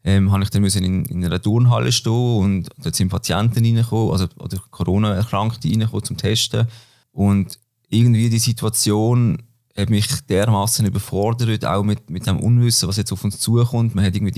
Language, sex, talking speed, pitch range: German, male, 170 wpm, 100-115 Hz